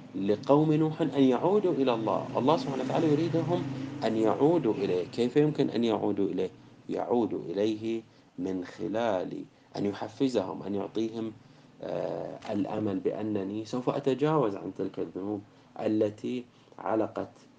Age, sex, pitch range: 30-49, male, 100-135 Hz